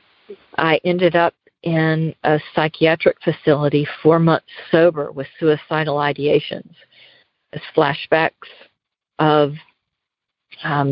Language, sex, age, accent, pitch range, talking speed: English, female, 40-59, American, 150-170 Hz, 90 wpm